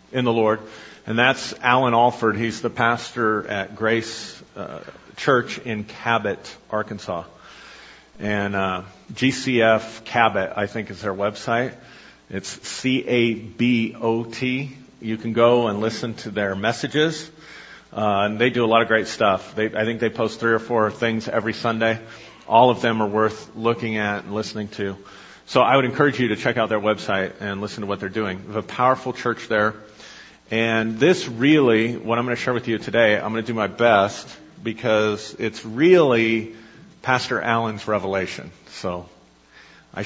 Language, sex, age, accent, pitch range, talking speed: English, male, 40-59, American, 105-120 Hz, 170 wpm